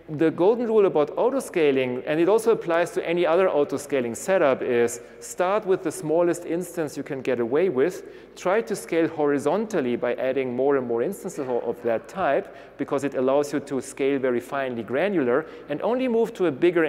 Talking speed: 190 wpm